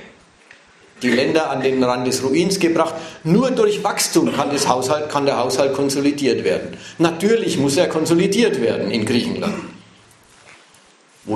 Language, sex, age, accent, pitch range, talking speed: German, male, 50-69, German, 140-190 Hz, 145 wpm